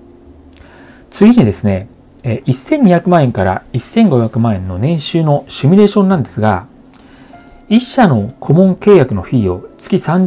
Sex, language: male, Japanese